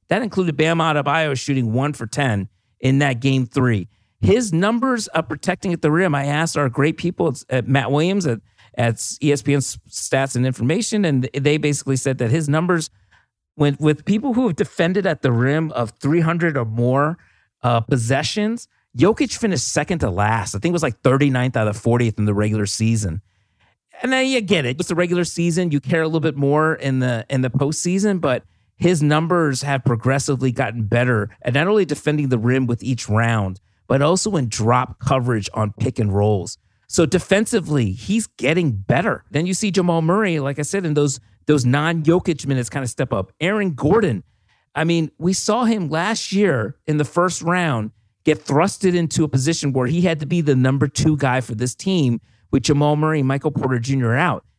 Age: 40-59